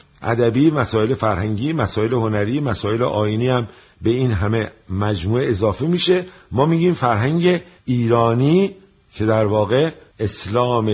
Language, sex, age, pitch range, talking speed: Persian, male, 50-69, 105-140 Hz, 120 wpm